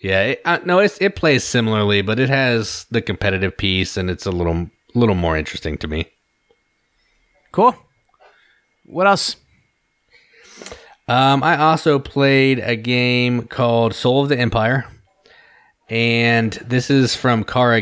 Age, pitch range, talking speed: 30-49, 95-115 Hz, 140 wpm